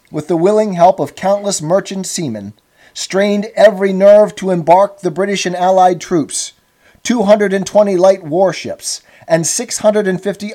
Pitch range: 155-195 Hz